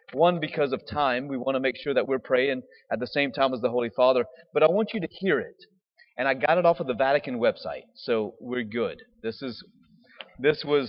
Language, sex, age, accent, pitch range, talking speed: English, male, 40-59, American, 125-165 Hz, 235 wpm